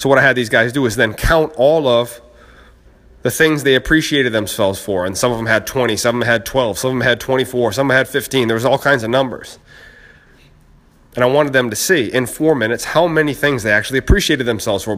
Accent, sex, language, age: American, male, English, 30-49